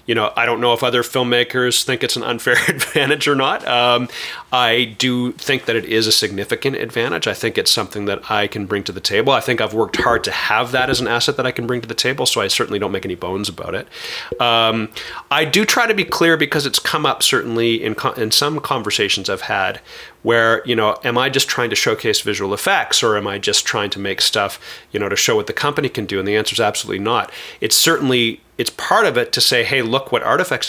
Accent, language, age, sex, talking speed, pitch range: American, English, 40-59, male, 250 wpm, 110-125 Hz